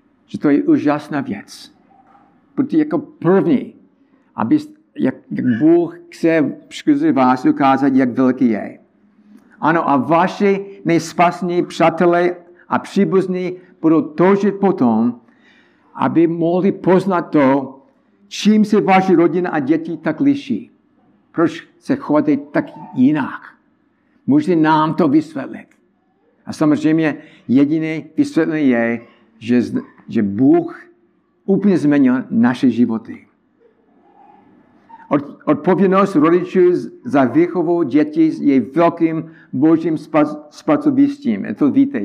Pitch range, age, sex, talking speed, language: 170-280 Hz, 60-79, male, 110 wpm, Czech